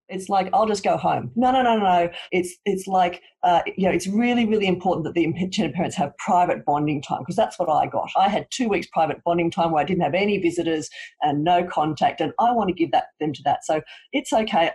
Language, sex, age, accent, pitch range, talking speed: English, female, 40-59, Australian, 155-215 Hz, 250 wpm